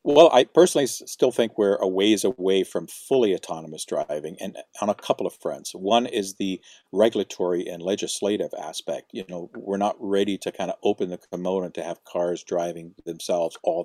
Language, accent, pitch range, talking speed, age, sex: English, American, 90-100 Hz, 185 wpm, 50-69, male